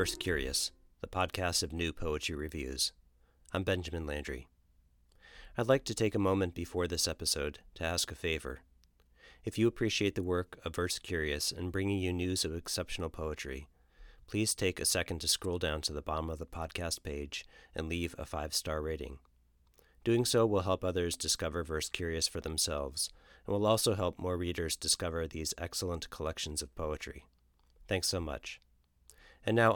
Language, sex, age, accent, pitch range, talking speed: English, male, 40-59, American, 75-95 Hz, 170 wpm